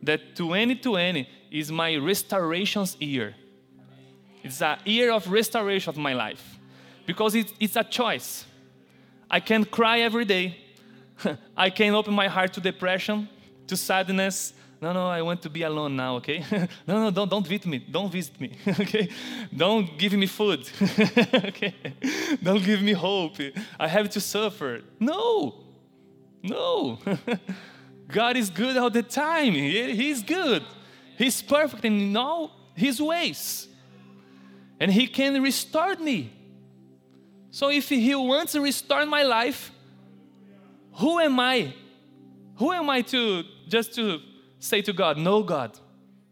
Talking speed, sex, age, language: 140 wpm, male, 20-39, English